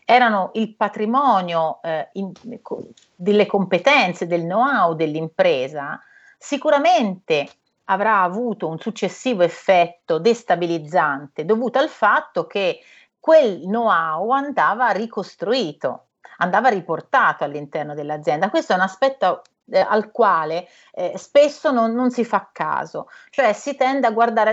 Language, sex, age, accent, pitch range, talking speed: Italian, female, 30-49, native, 175-240 Hz, 115 wpm